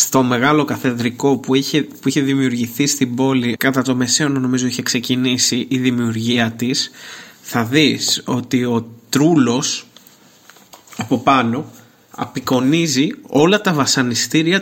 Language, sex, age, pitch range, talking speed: Greek, male, 20-39, 125-160 Hz, 125 wpm